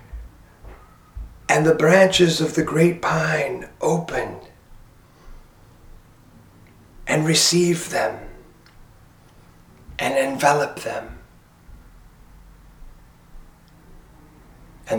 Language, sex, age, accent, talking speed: English, male, 40-59, American, 60 wpm